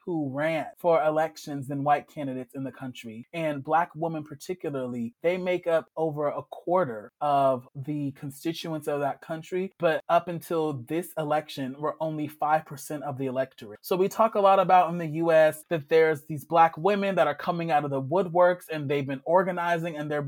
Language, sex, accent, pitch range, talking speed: English, male, American, 145-175 Hz, 190 wpm